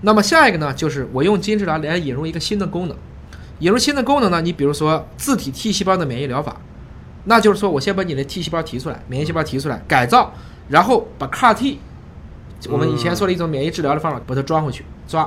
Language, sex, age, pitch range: Chinese, male, 20-39, 130-195 Hz